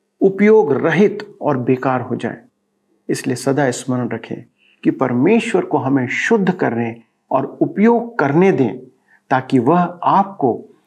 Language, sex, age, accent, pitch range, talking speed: Hindi, male, 50-69, native, 125-195 Hz, 125 wpm